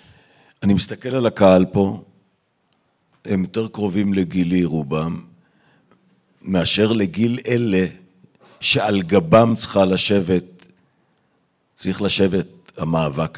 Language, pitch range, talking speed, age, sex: Hebrew, 95-120 Hz, 90 wpm, 50-69, male